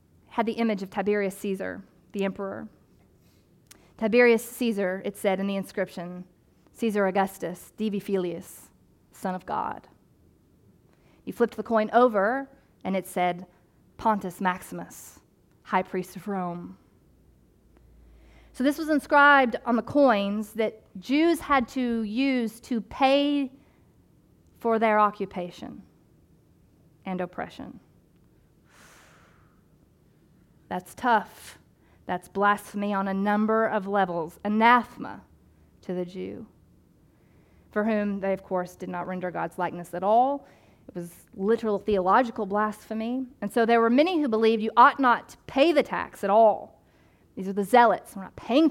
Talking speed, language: 135 wpm, English